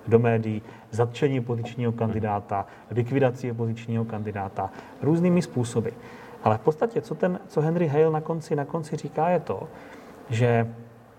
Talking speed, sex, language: 140 wpm, male, Czech